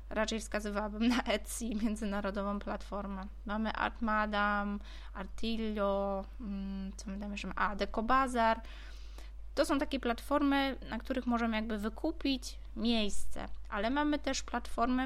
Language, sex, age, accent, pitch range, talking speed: Polish, female, 20-39, native, 205-245 Hz, 110 wpm